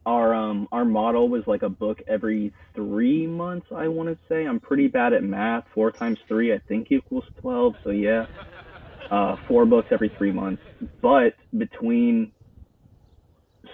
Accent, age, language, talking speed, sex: American, 20-39, English, 165 wpm, male